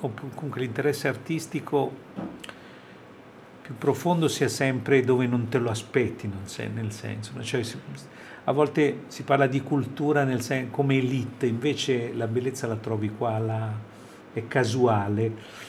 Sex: male